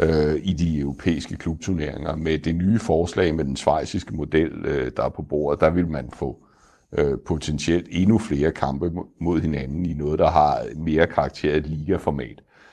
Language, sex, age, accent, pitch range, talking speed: Danish, male, 60-79, native, 80-100 Hz, 155 wpm